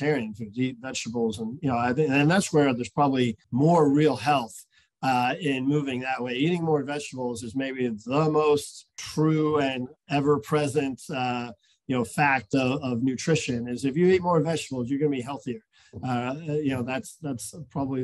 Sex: male